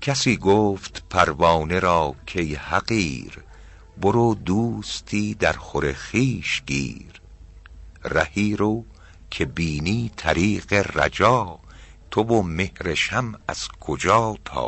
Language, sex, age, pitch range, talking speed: Persian, male, 50-69, 80-100 Hz, 95 wpm